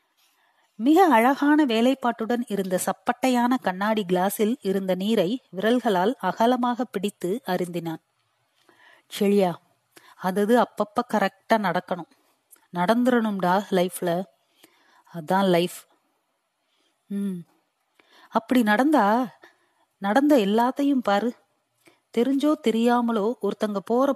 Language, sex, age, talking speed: Tamil, female, 30-49, 60 wpm